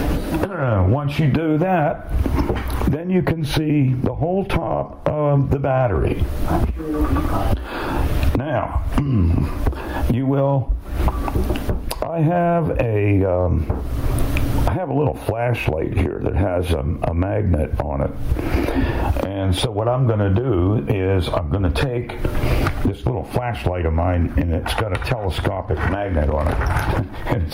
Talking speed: 130 wpm